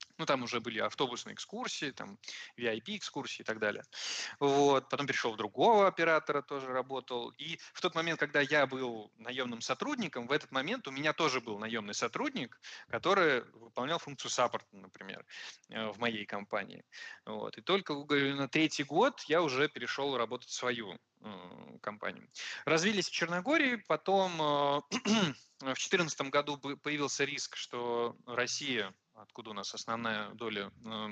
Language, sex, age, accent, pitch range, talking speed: Russian, male, 20-39, native, 115-155 Hz, 145 wpm